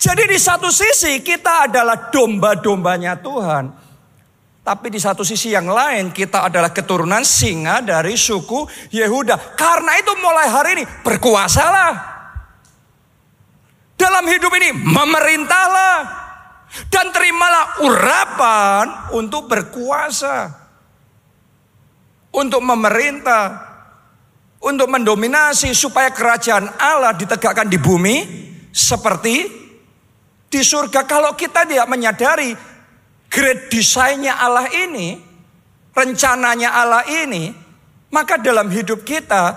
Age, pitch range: 50-69, 205-295 Hz